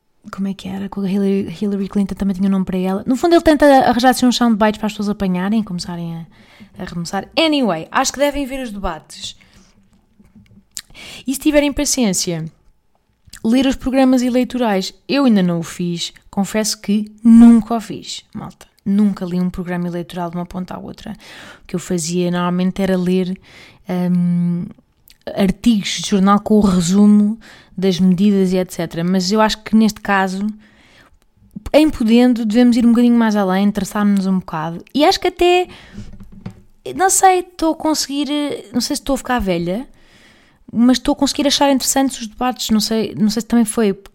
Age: 20-39